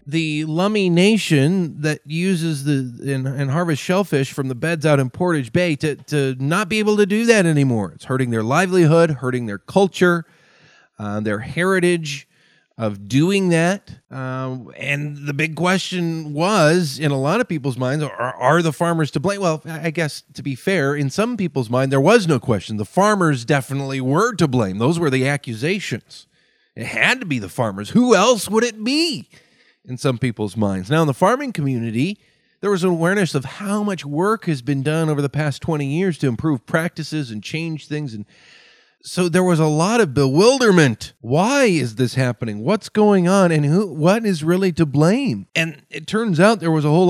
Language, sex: English, male